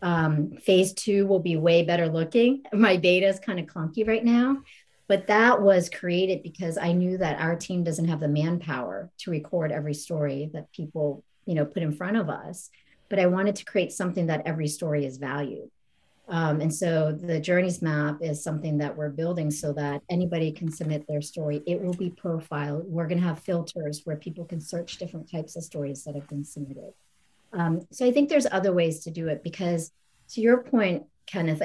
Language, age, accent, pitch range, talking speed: English, 40-59, American, 155-180 Hz, 205 wpm